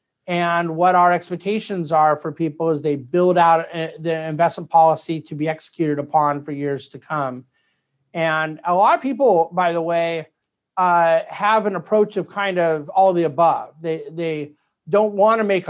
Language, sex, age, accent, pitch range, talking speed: English, male, 50-69, American, 155-190 Hz, 180 wpm